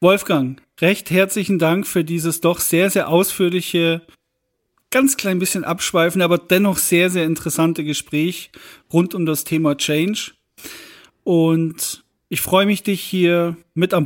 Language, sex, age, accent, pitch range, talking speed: German, male, 40-59, German, 165-190 Hz, 140 wpm